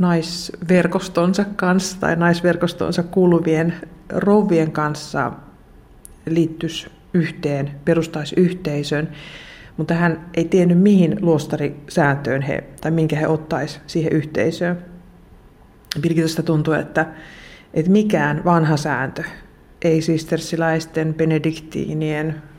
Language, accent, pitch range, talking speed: Finnish, native, 150-175 Hz, 90 wpm